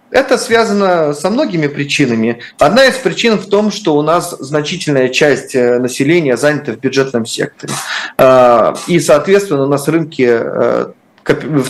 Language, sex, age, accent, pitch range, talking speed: Russian, male, 30-49, native, 125-170 Hz, 135 wpm